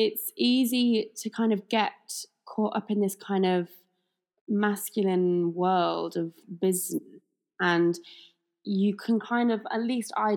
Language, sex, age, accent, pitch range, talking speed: English, female, 20-39, British, 180-215 Hz, 140 wpm